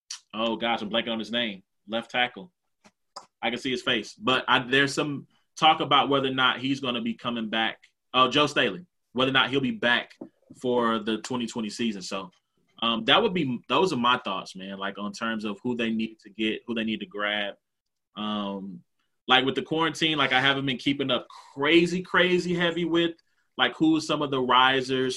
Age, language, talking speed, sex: 20-39, English, 205 wpm, male